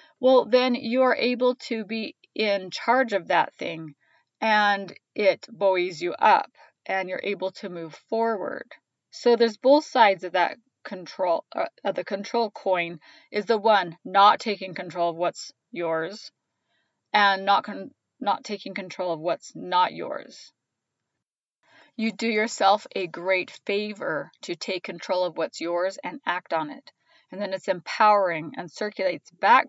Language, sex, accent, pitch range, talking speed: English, female, American, 180-230 Hz, 155 wpm